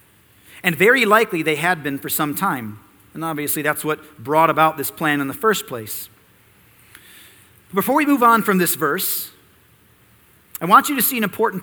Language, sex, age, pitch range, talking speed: English, male, 40-59, 135-225 Hz, 180 wpm